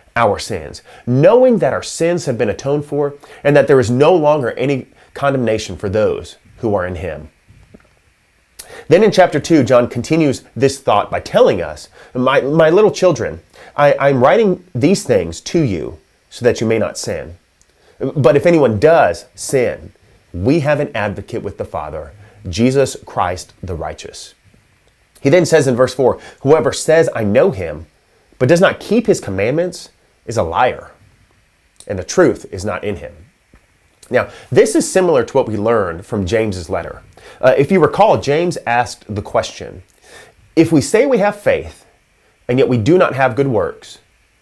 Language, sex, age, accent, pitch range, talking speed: English, male, 30-49, American, 110-170 Hz, 175 wpm